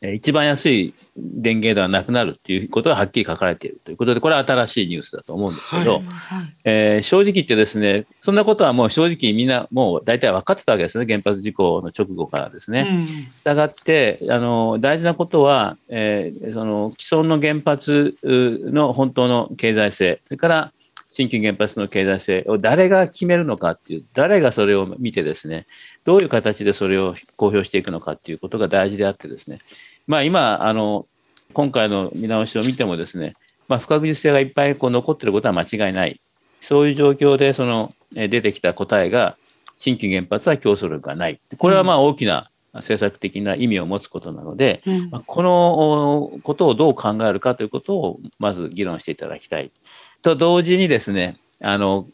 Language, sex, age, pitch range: Japanese, male, 40-59, 105-150 Hz